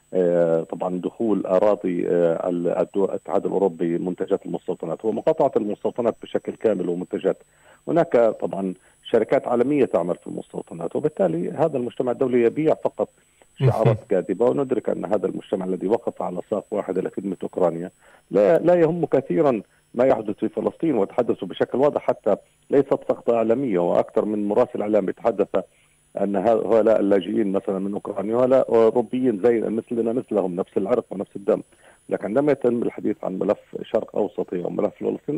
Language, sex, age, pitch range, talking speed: Arabic, male, 40-59, 90-120 Hz, 140 wpm